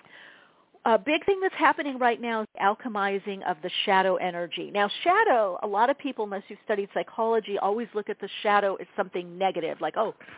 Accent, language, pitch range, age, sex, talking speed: American, English, 175-215 Hz, 50-69, female, 195 wpm